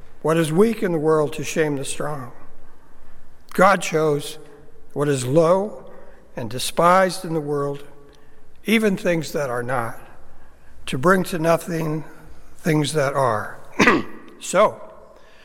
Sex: male